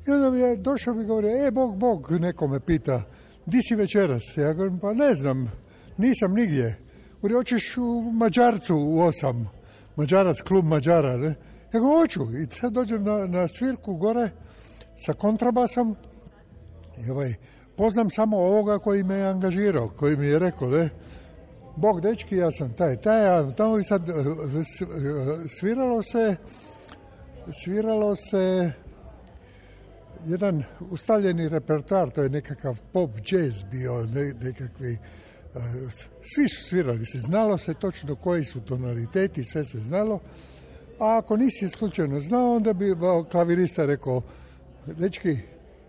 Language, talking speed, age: Croatian, 140 wpm, 60-79